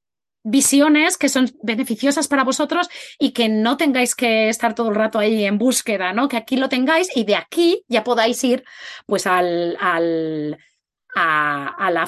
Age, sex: 20-39, female